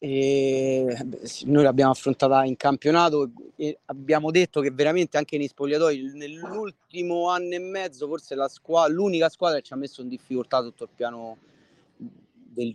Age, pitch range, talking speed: 30-49, 130-160 Hz, 155 wpm